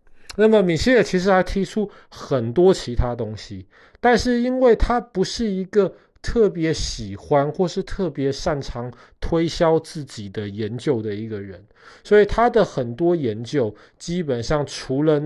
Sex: male